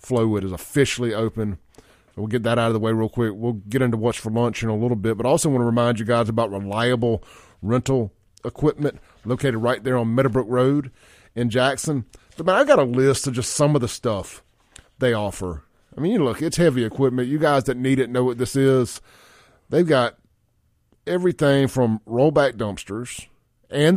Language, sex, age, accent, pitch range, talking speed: English, male, 30-49, American, 110-135 Hz, 195 wpm